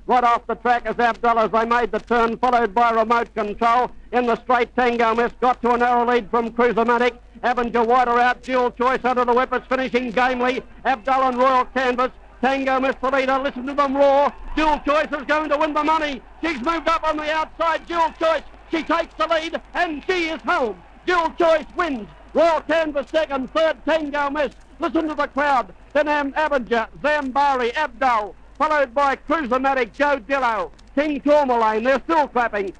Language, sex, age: English, male, 60-79